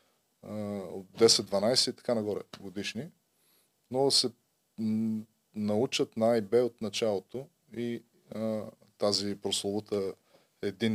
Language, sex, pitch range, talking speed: Bulgarian, male, 100-110 Hz, 105 wpm